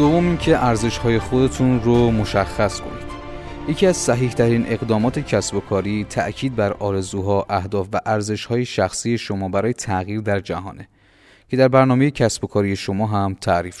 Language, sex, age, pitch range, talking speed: Persian, male, 30-49, 95-115 Hz, 165 wpm